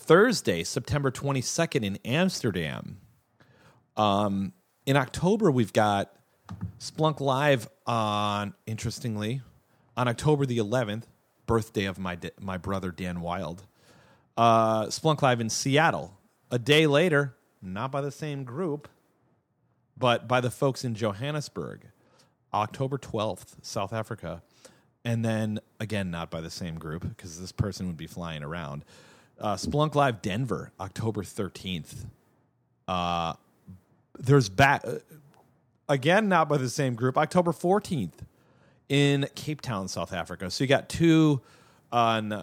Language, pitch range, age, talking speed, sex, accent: English, 95-140 Hz, 30-49, 130 wpm, male, American